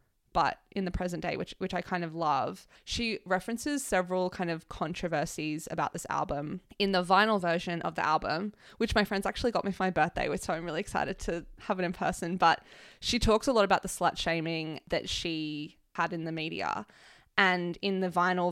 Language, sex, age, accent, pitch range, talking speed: English, female, 20-39, Australian, 165-190 Hz, 205 wpm